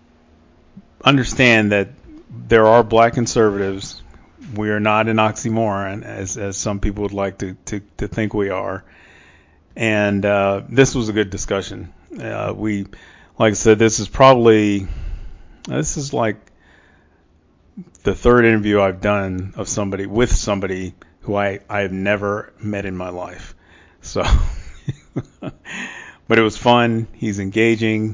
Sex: male